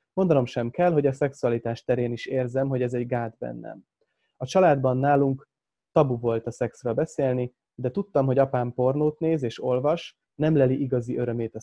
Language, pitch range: Hungarian, 120-145 Hz